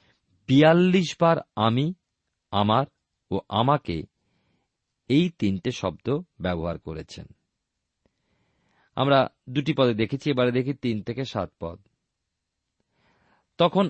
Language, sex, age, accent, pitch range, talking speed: Bengali, male, 40-59, native, 115-150 Hz, 95 wpm